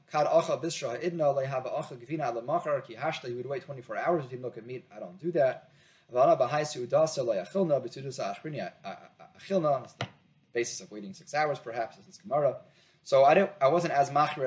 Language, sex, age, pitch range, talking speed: English, male, 20-39, 120-160 Hz, 115 wpm